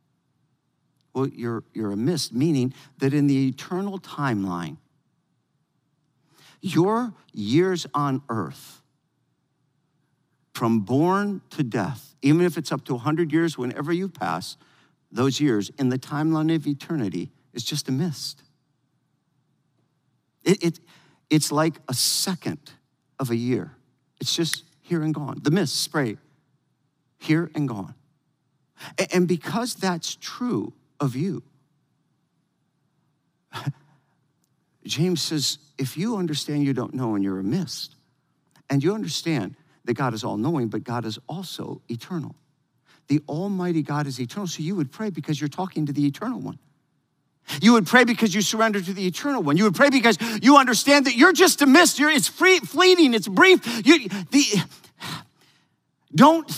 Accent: American